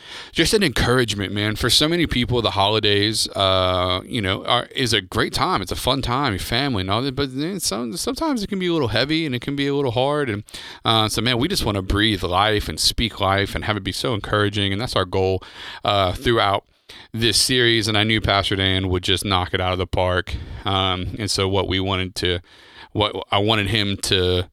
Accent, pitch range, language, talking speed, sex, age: American, 95-110 Hz, English, 235 wpm, male, 30-49